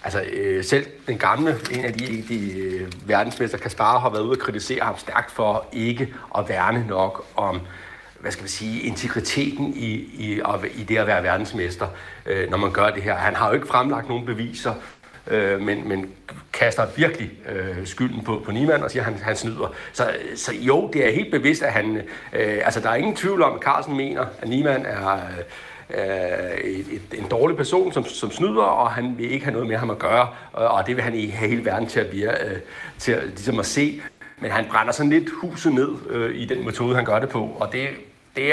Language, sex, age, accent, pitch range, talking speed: Danish, male, 60-79, native, 110-140 Hz, 200 wpm